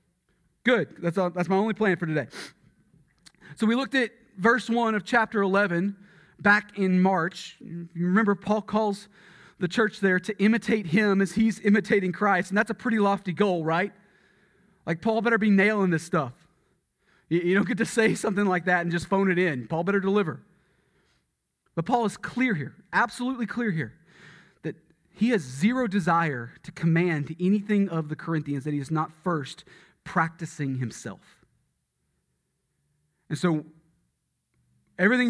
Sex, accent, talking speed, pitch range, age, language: male, American, 160 wpm, 155-205 Hz, 30-49, English